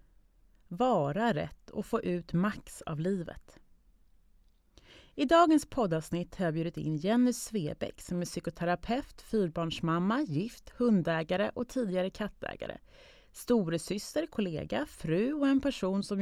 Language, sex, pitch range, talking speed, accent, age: Swedish, female, 165-225 Hz, 120 wpm, native, 30-49